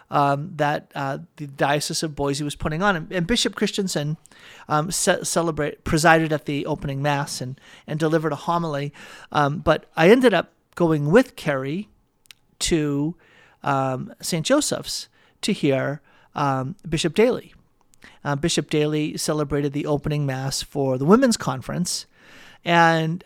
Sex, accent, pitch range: male, American, 145-175 Hz